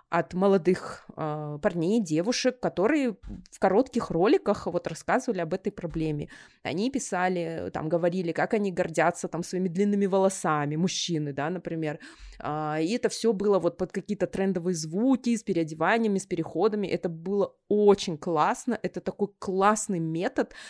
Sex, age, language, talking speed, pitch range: female, 20-39, Russian, 150 wpm, 165-205 Hz